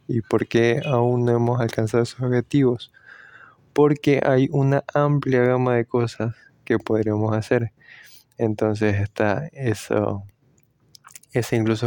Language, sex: English, male